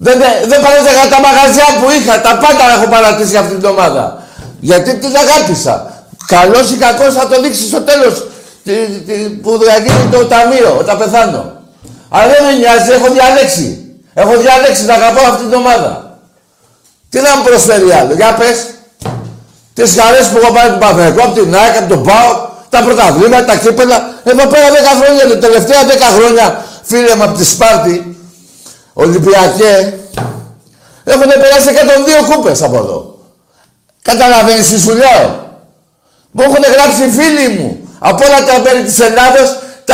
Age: 60-79